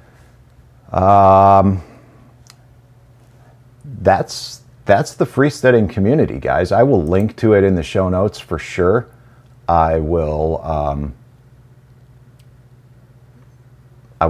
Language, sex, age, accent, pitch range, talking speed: English, male, 50-69, American, 80-110 Hz, 95 wpm